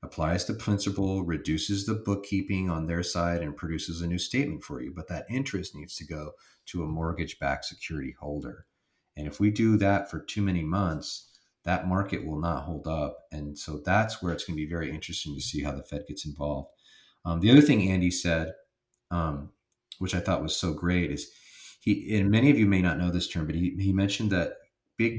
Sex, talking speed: male, 210 wpm